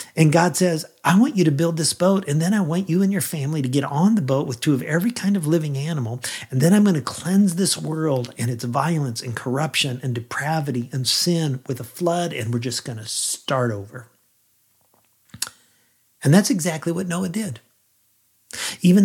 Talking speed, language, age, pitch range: 205 wpm, English, 50-69, 125-170 Hz